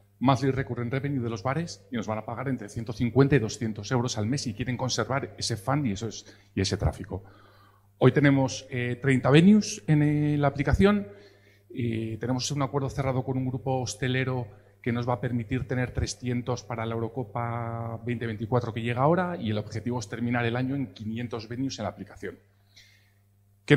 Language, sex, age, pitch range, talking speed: Spanish, male, 40-59, 105-140 Hz, 185 wpm